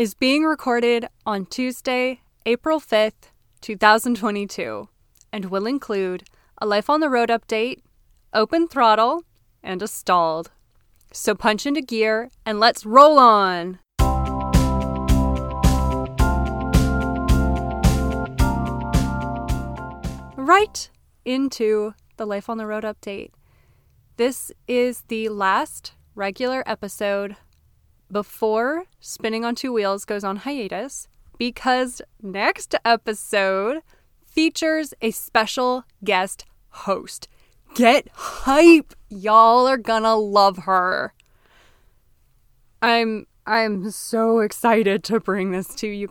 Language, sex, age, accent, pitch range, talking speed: English, female, 20-39, American, 190-235 Hz, 100 wpm